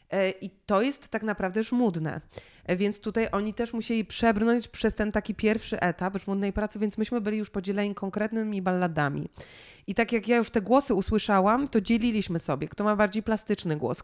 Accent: native